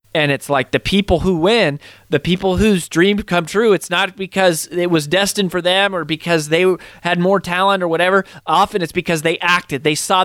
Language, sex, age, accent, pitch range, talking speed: English, male, 30-49, American, 135-170 Hz, 210 wpm